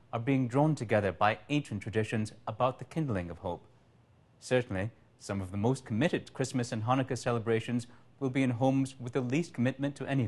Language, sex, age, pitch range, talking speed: English, male, 30-49, 105-125 Hz, 185 wpm